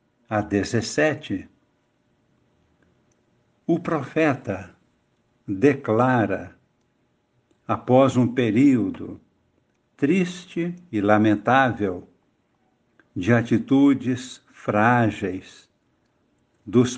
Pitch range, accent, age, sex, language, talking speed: 105-135 Hz, Brazilian, 60-79, male, Portuguese, 55 wpm